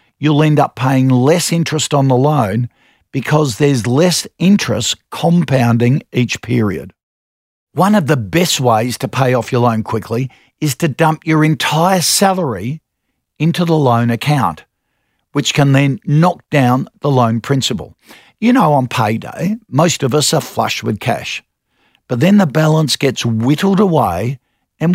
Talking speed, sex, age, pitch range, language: 155 wpm, male, 50-69, 120-160 Hz, English